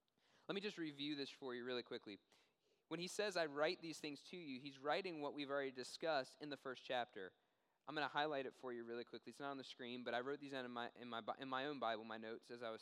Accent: American